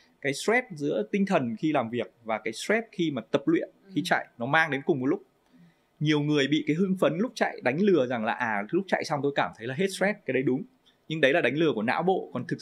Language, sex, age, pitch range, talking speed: Vietnamese, male, 20-39, 120-180 Hz, 275 wpm